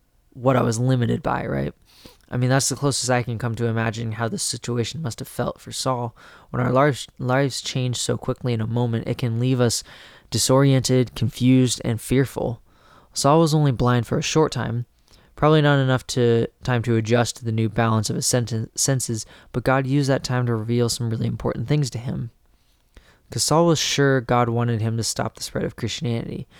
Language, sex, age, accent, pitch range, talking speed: English, male, 20-39, American, 115-135 Hz, 205 wpm